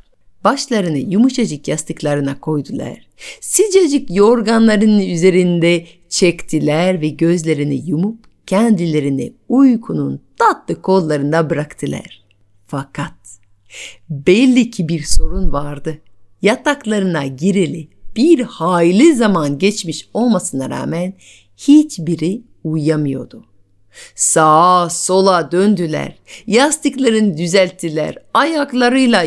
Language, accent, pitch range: Turkish, native, 160-220 Hz